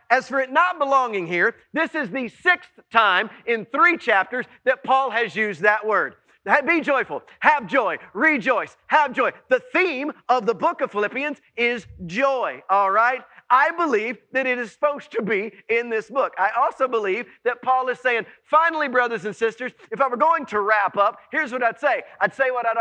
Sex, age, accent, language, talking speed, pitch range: male, 40-59, American, English, 195 wpm, 240-305 Hz